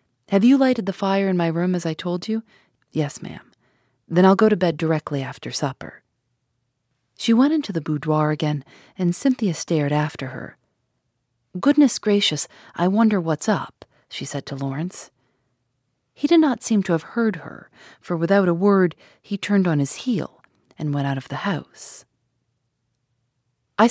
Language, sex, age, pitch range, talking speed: English, female, 40-59, 135-190 Hz, 170 wpm